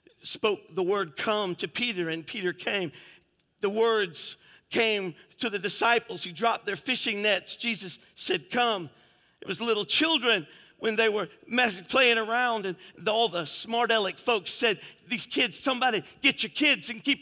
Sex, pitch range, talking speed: male, 165-240 Hz, 175 wpm